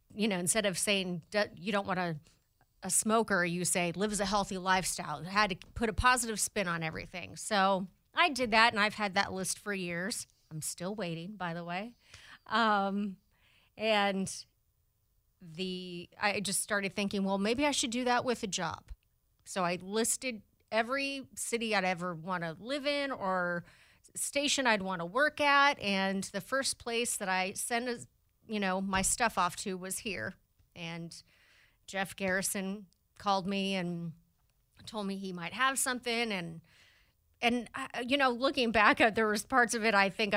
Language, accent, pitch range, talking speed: English, American, 180-230 Hz, 180 wpm